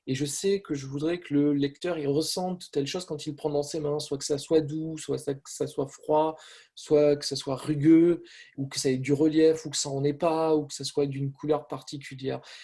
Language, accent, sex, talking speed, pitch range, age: French, French, male, 250 wpm, 140-165 Hz, 20-39